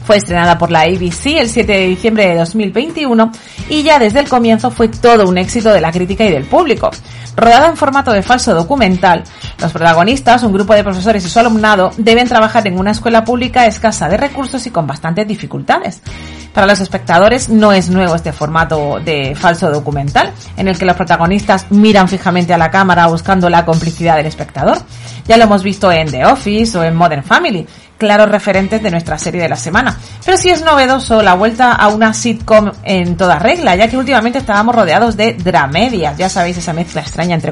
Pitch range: 170-225 Hz